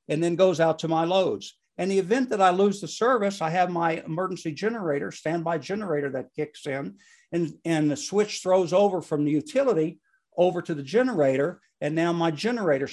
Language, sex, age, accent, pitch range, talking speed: English, male, 60-79, American, 155-200 Hz, 195 wpm